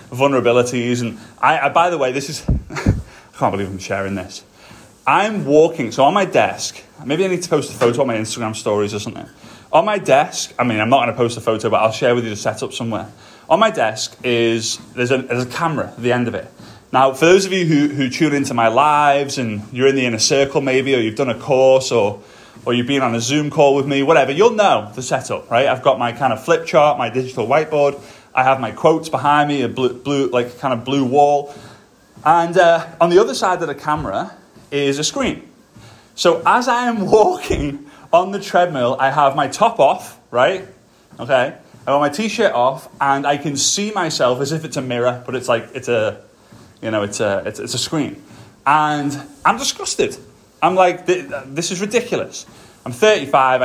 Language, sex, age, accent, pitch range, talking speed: English, male, 30-49, British, 120-155 Hz, 220 wpm